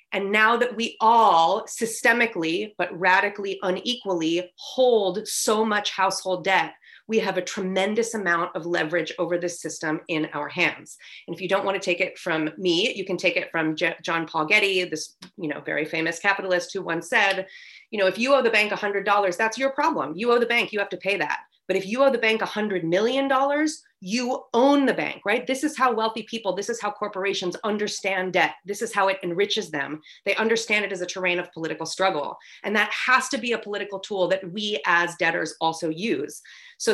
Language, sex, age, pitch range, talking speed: English, female, 30-49, 180-225 Hz, 210 wpm